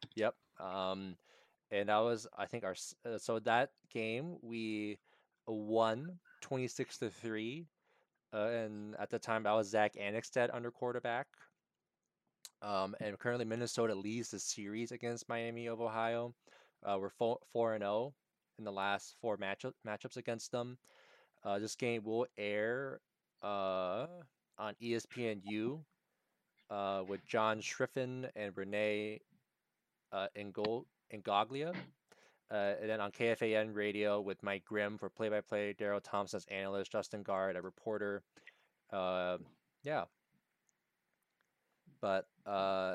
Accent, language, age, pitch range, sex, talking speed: American, English, 20-39, 100-120 Hz, male, 130 wpm